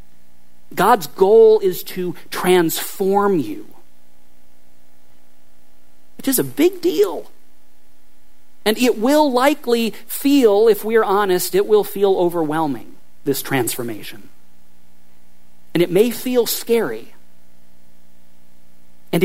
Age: 40-59